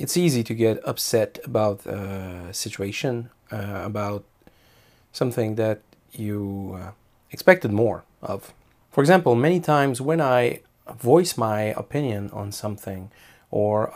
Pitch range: 100-130 Hz